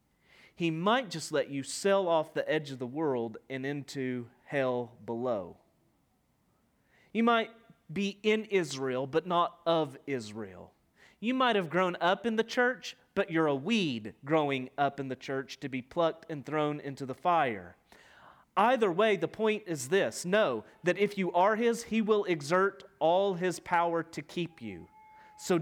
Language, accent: English, American